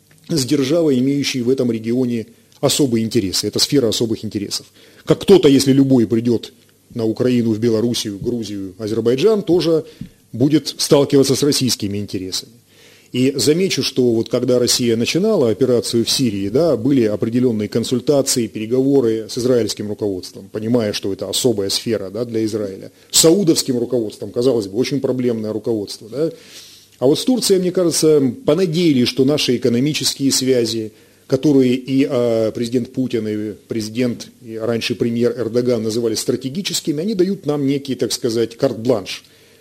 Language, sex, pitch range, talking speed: Russian, male, 115-140 Hz, 140 wpm